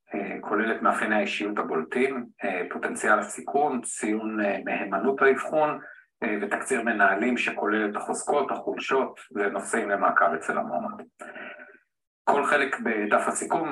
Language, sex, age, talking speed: Hebrew, male, 50-69, 105 wpm